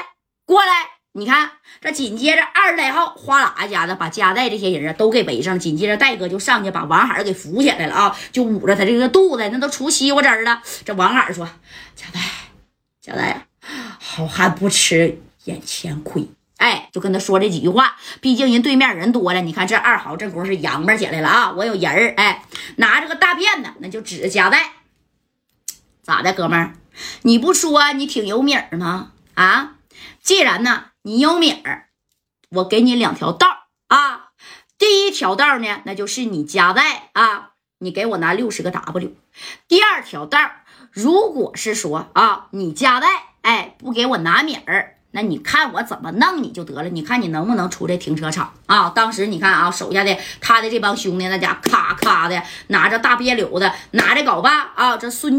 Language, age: Chinese, 20-39